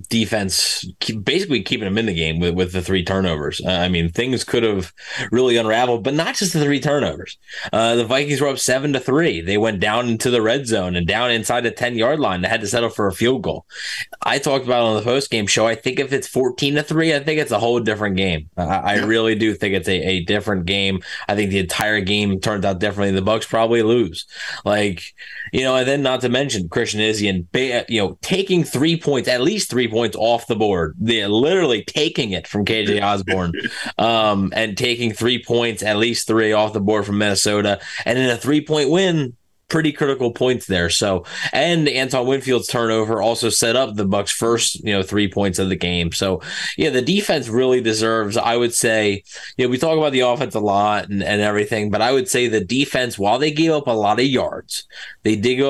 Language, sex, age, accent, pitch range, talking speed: English, male, 20-39, American, 100-125 Hz, 225 wpm